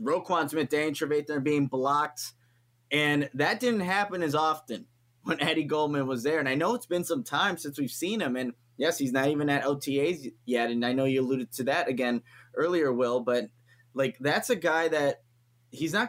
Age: 20-39